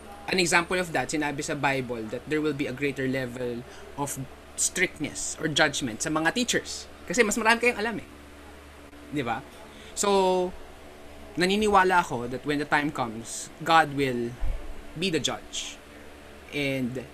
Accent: Filipino